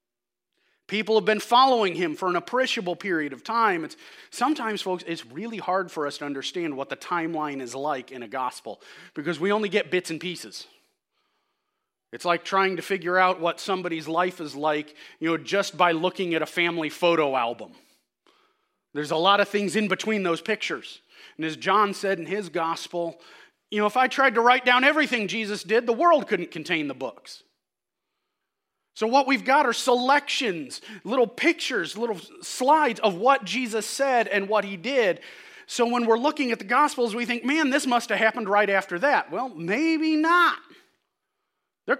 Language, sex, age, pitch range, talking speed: English, male, 30-49, 185-290 Hz, 185 wpm